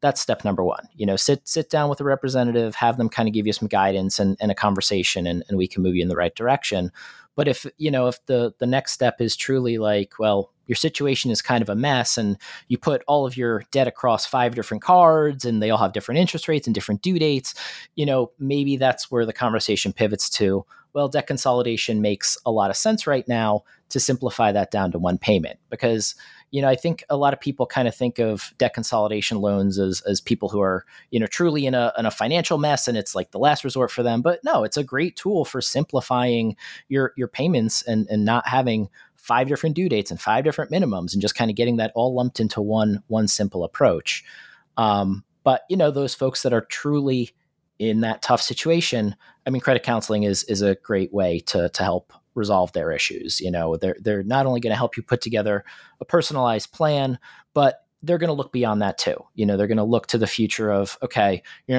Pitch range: 105-135 Hz